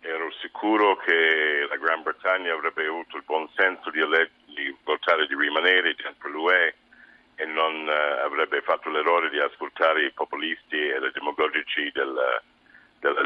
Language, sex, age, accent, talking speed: Italian, male, 60-79, native, 150 wpm